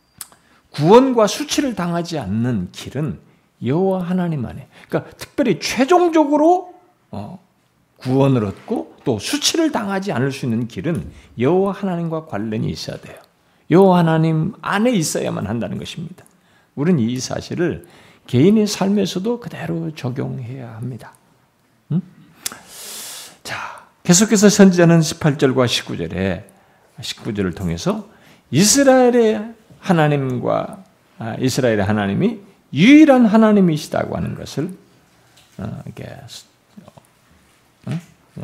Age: 50-69